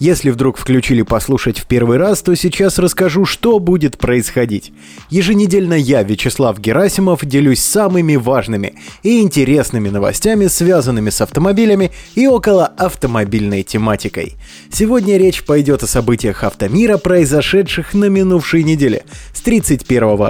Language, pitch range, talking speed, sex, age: Russian, 110-185 Hz, 125 wpm, male, 20-39